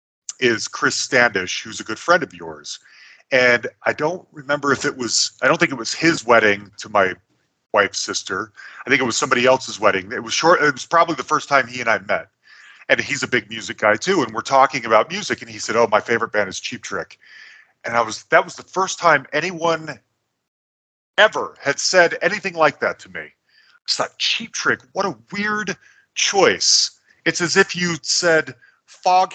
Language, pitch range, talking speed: English, 130-175 Hz, 205 wpm